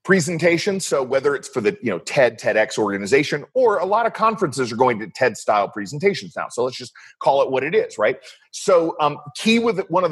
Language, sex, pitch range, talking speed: English, male, 115-190 Hz, 225 wpm